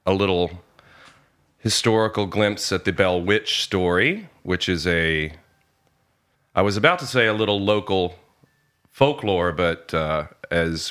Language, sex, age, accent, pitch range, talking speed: English, male, 40-59, American, 85-105 Hz, 130 wpm